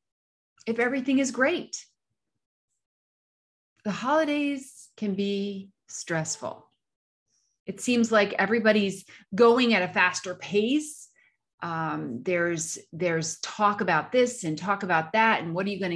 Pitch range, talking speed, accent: 170-225 Hz, 125 wpm, American